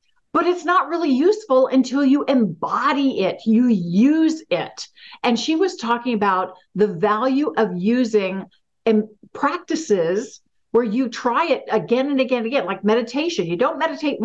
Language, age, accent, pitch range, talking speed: English, 50-69, American, 225-320 Hz, 150 wpm